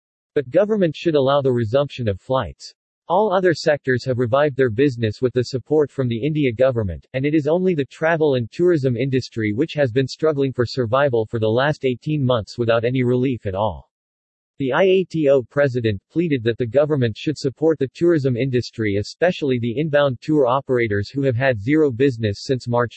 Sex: male